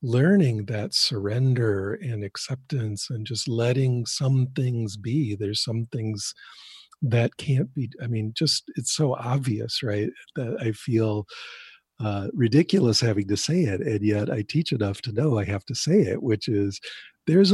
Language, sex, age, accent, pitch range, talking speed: English, male, 50-69, American, 105-135 Hz, 165 wpm